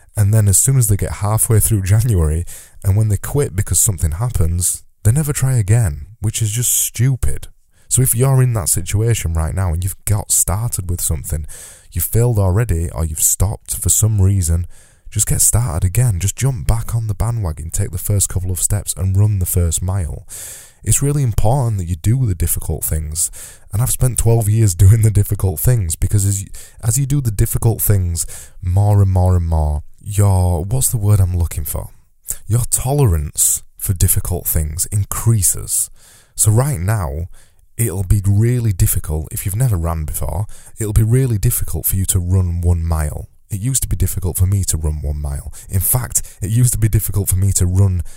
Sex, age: male, 20-39